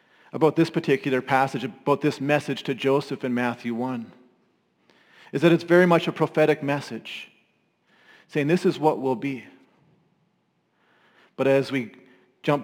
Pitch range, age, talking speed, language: 130-165 Hz, 40-59, 140 wpm, English